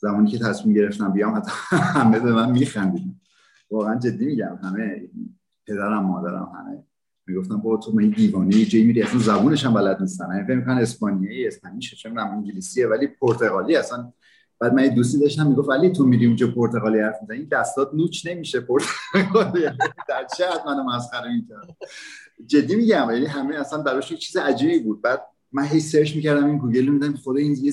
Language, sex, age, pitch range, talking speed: Persian, male, 30-49, 110-180 Hz, 175 wpm